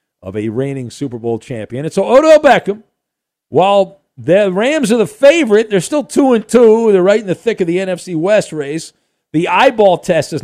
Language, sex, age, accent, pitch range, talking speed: English, male, 50-69, American, 140-200 Hz, 205 wpm